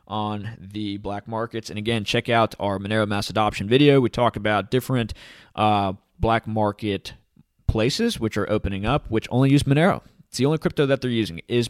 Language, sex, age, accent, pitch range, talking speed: English, male, 20-39, American, 105-140 Hz, 190 wpm